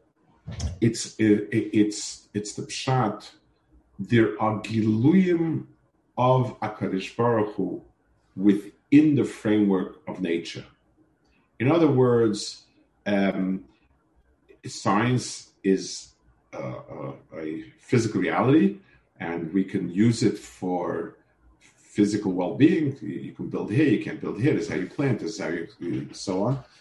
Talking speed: 125 wpm